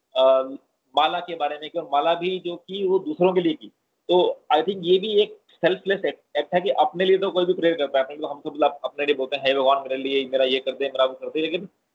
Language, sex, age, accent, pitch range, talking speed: Hindi, male, 30-49, native, 145-175 Hz, 190 wpm